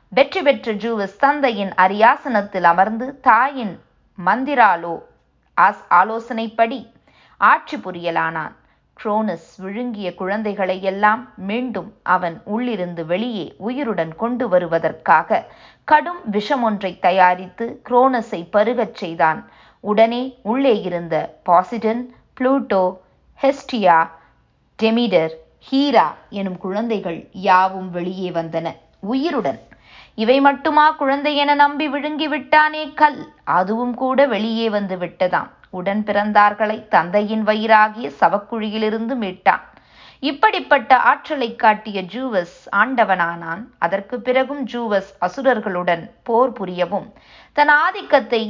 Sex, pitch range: female, 185-255 Hz